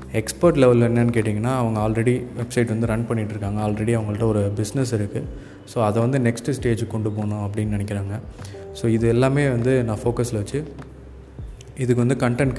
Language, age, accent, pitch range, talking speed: Tamil, 20-39, native, 105-120 Hz, 160 wpm